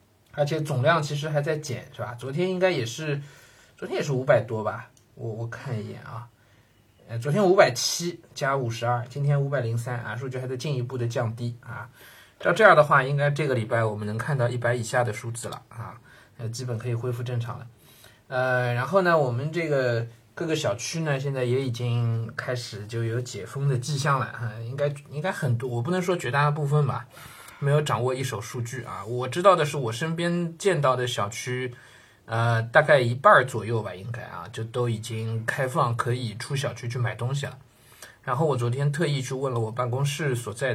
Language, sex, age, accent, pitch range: Chinese, male, 20-39, native, 115-145 Hz